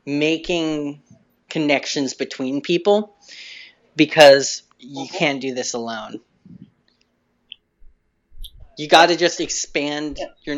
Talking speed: 90 wpm